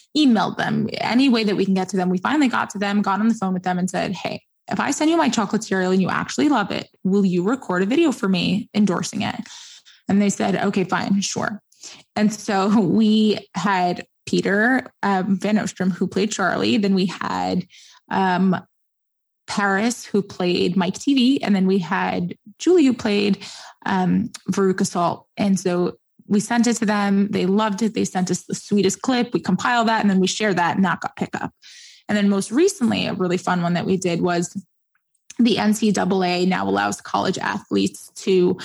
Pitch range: 185-225 Hz